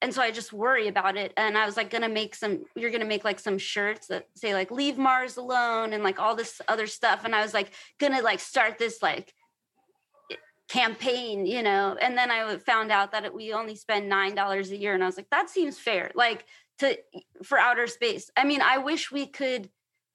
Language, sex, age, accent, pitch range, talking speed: English, female, 20-39, American, 215-275 Hz, 220 wpm